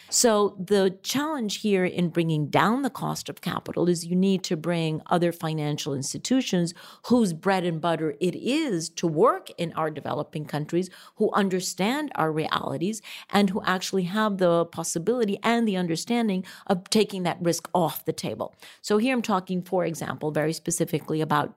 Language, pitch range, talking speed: English, 170-215 Hz, 165 wpm